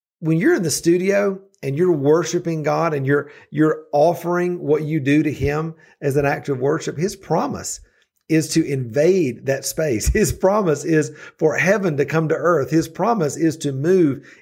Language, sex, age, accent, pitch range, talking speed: English, male, 50-69, American, 130-170 Hz, 185 wpm